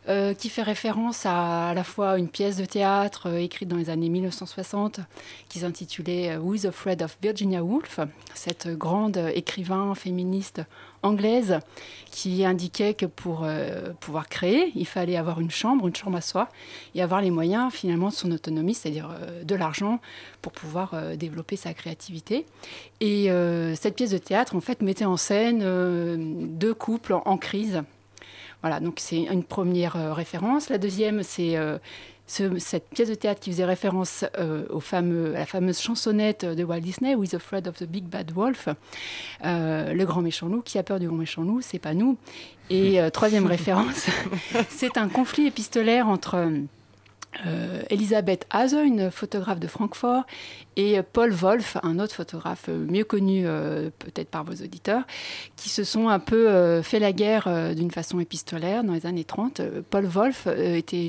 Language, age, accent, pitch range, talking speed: French, 30-49, French, 170-210 Hz, 185 wpm